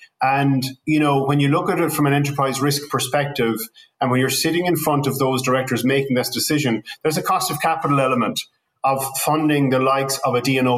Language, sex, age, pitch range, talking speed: English, male, 30-49, 130-150 Hz, 210 wpm